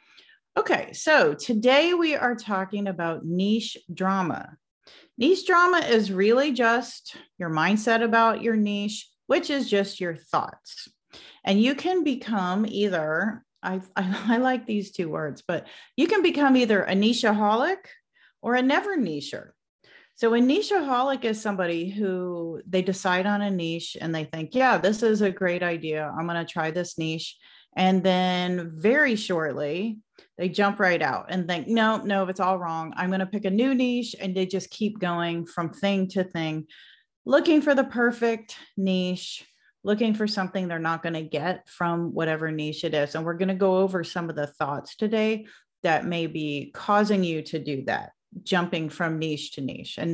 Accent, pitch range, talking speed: American, 170-230 Hz, 175 wpm